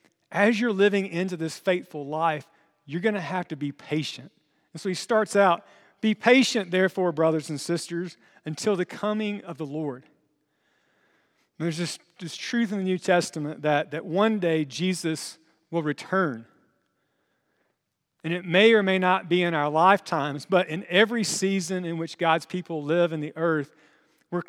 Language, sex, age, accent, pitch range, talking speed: English, male, 40-59, American, 165-205 Hz, 170 wpm